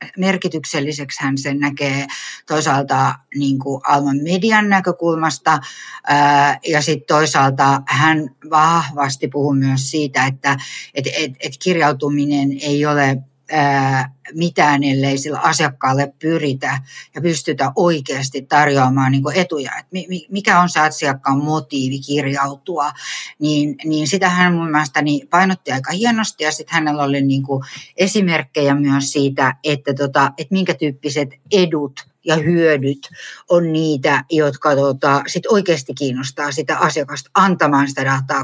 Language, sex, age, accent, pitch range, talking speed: English, female, 60-79, Finnish, 140-165 Hz, 120 wpm